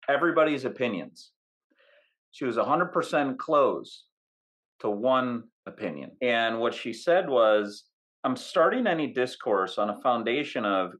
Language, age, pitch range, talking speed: English, 40-59, 125-180 Hz, 130 wpm